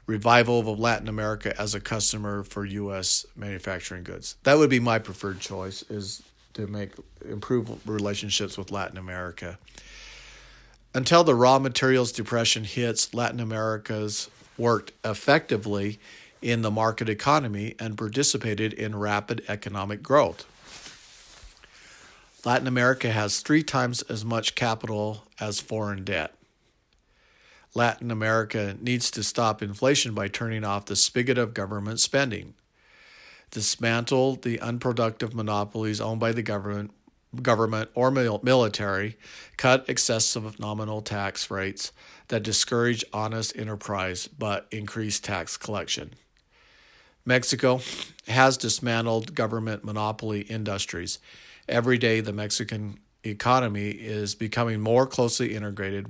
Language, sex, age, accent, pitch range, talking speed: English, male, 50-69, American, 105-120 Hz, 120 wpm